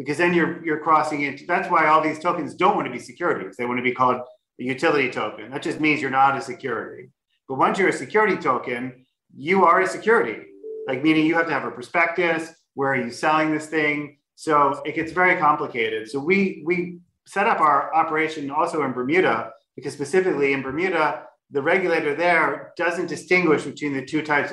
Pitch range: 135-165 Hz